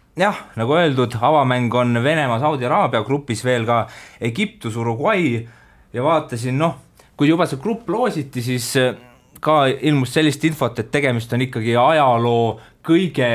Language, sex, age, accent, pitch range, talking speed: English, male, 20-39, Finnish, 115-145 Hz, 140 wpm